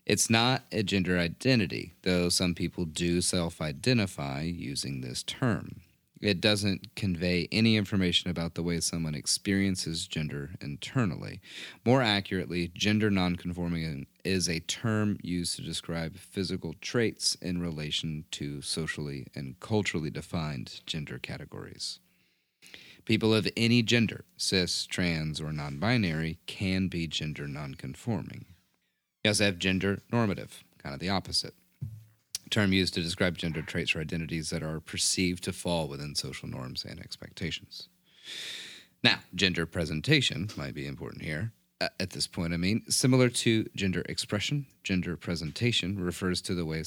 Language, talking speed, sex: English, 140 wpm, male